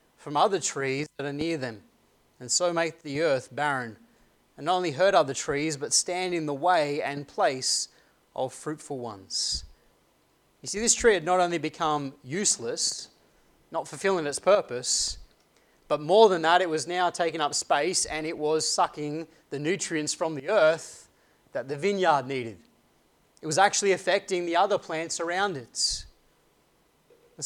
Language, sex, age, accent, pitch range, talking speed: English, male, 30-49, Australian, 145-185 Hz, 165 wpm